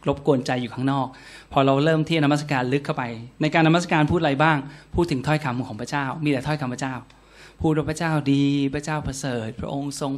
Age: 20-39